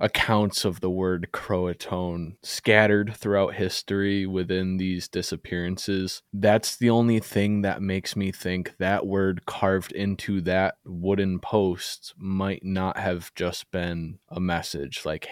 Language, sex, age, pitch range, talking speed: English, male, 20-39, 90-110 Hz, 135 wpm